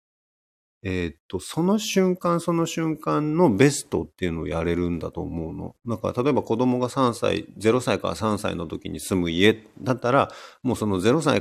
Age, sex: 40-59, male